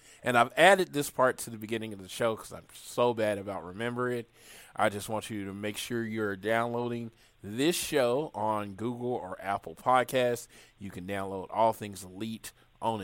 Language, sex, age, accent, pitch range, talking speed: English, male, 20-39, American, 95-120 Hz, 190 wpm